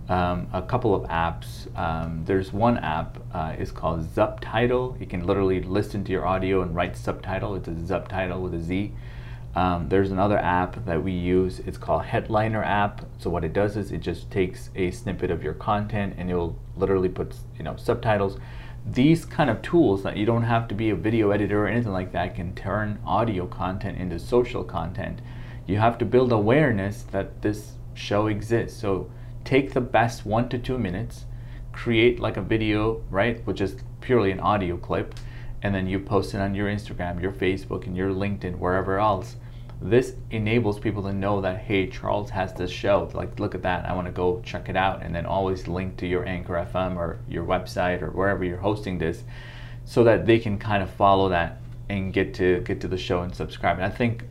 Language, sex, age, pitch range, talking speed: English, male, 30-49, 95-120 Hz, 205 wpm